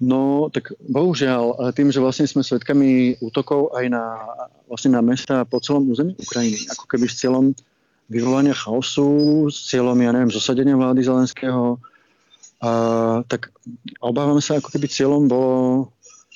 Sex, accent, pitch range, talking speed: male, native, 120-135 Hz, 140 wpm